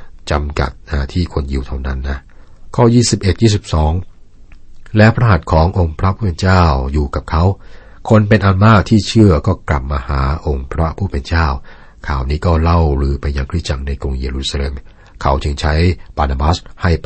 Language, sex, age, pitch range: Thai, male, 60-79, 70-95 Hz